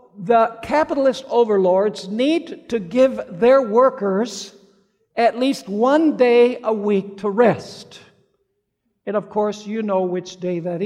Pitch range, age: 195-260 Hz, 60-79